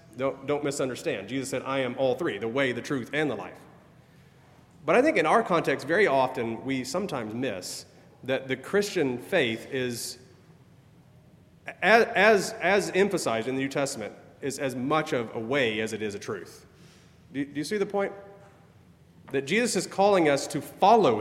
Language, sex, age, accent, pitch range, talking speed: English, male, 40-59, American, 130-155 Hz, 180 wpm